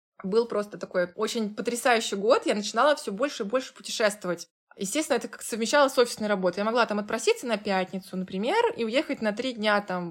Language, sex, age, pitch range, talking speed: Russian, female, 20-39, 200-250 Hz, 190 wpm